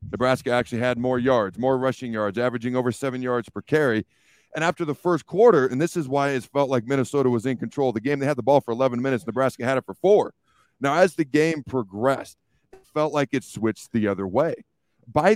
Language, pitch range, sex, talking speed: English, 120-145 Hz, male, 230 wpm